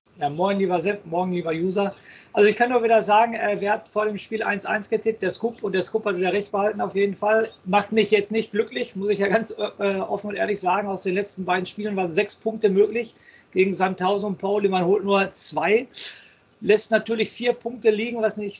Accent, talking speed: German, 225 wpm